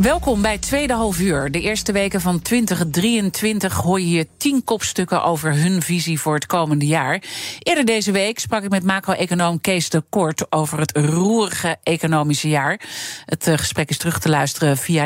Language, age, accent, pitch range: Dutch, 40-59, Dutch, 160-195 Hz